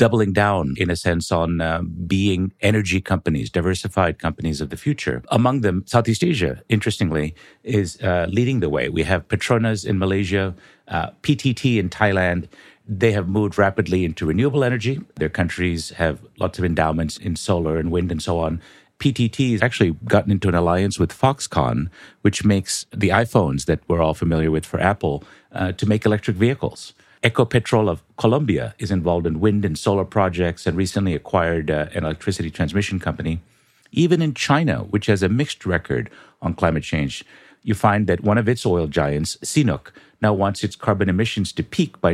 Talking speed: 180 wpm